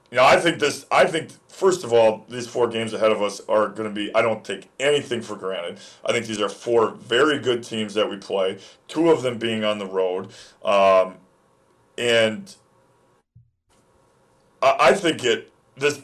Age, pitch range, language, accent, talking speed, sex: 40-59, 110-145 Hz, English, American, 190 wpm, male